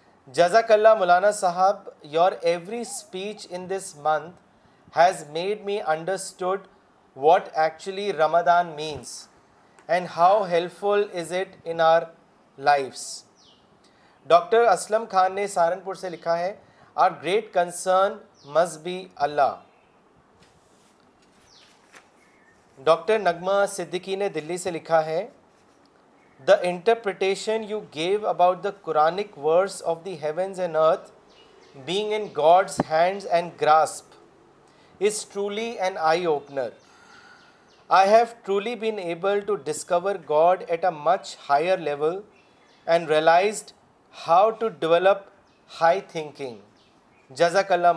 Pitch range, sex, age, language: 160-200 Hz, male, 40-59, Urdu